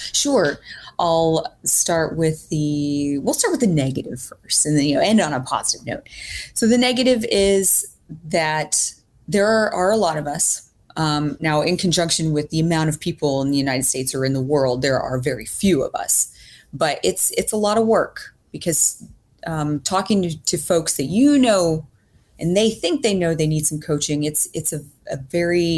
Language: English